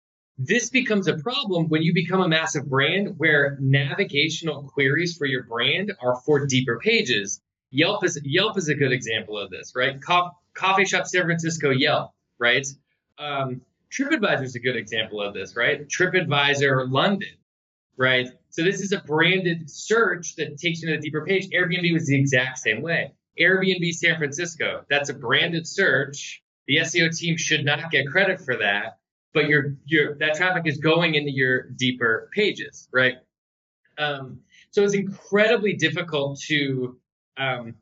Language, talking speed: English, 160 wpm